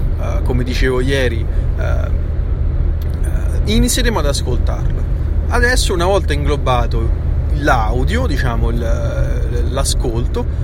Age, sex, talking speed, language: 30-49, male, 75 wpm, Italian